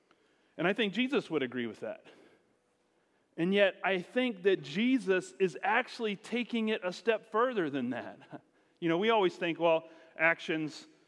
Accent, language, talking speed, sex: American, English, 160 wpm, male